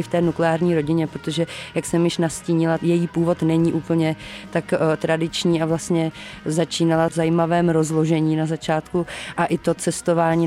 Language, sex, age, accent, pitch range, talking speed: Czech, female, 30-49, native, 160-175 Hz, 155 wpm